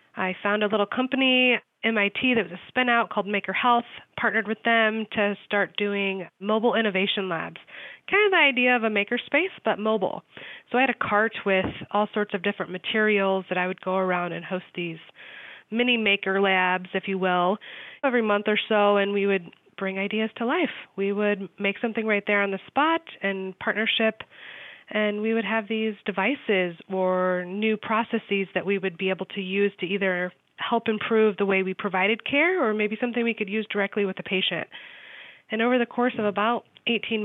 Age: 20-39